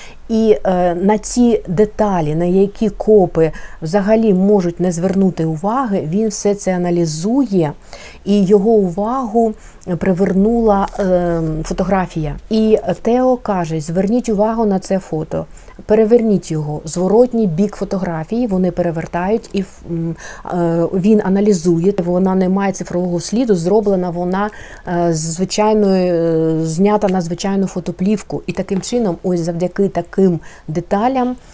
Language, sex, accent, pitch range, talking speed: Ukrainian, female, native, 175-210 Hz, 120 wpm